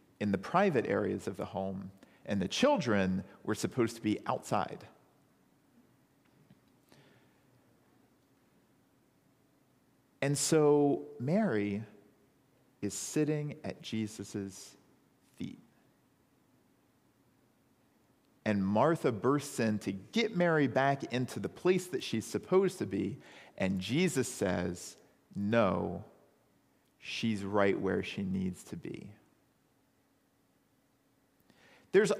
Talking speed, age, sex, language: 95 wpm, 40-59, male, English